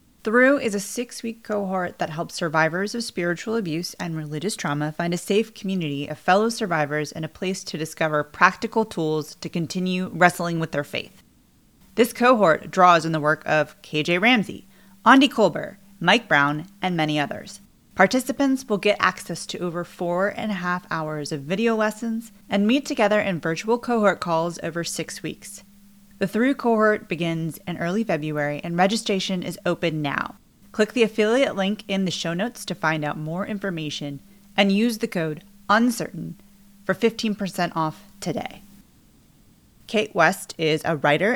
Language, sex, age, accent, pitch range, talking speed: English, female, 30-49, American, 160-215 Hz, 165 wpm